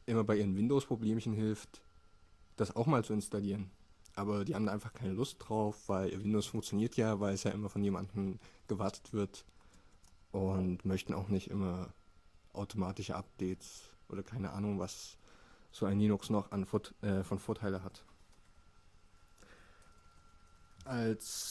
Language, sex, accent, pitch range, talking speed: German, male, German, 95-110 Hz, 140 wpm